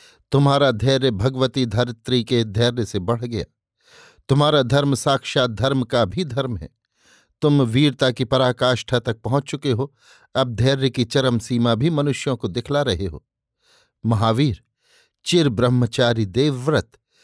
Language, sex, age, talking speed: Hindi, male, 50-69, 135 wpm